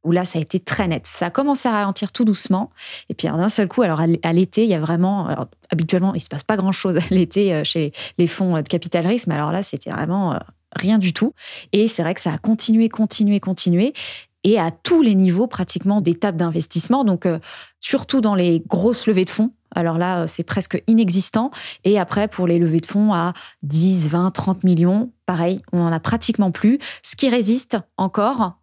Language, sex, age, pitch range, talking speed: French, female, 20-39, 175-220 Hz, 215 wpm